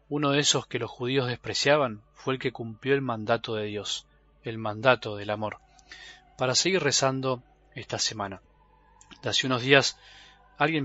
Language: Spanish